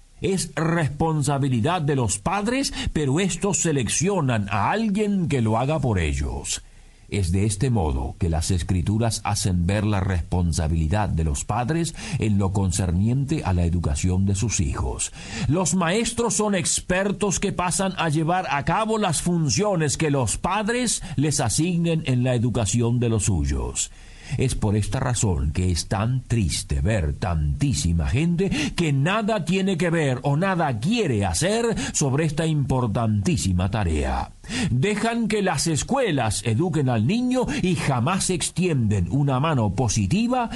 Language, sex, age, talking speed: Spanish, male, 50-69, 145 wpm